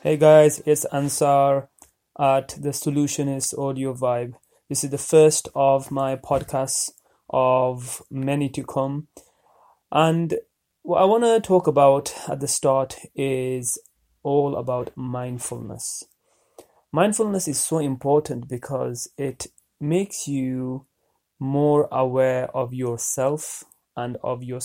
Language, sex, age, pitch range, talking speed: English, male, 30-49, 130-155 Hz, 120 wpm